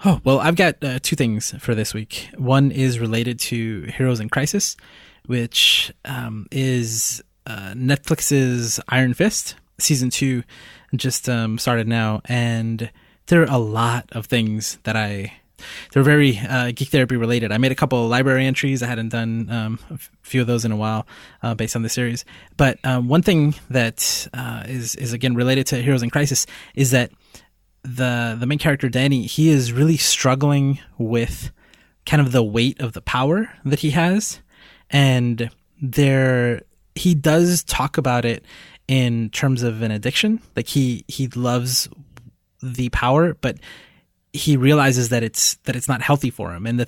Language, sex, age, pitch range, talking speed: English, male, 20-39, 115-140 Hz, 175 wpm